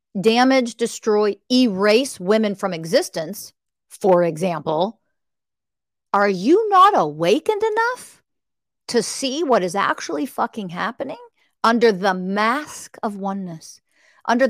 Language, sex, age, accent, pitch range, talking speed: English, female, 40-59, American, 195-245 Hz, 110 wpm